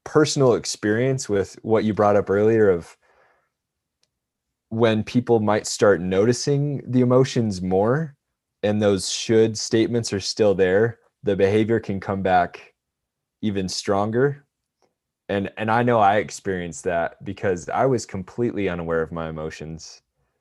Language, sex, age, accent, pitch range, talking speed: English, male, 20-39, American, 95-125 Hz, 135 wpm